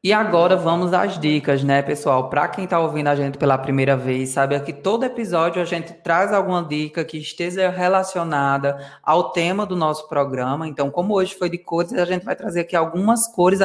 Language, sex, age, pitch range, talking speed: Portuguese, female, 20-39, 145-180 Hz, 200 wpm